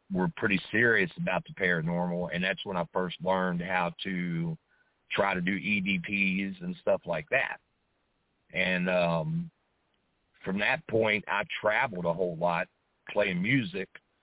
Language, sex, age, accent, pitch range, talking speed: English, male, 50-69, American, 95-110 Hz, 145 wpm